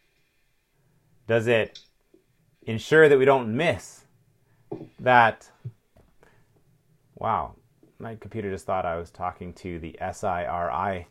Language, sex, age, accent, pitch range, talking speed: English, male, 30-49, American, 110-145 Hz, 105 wpm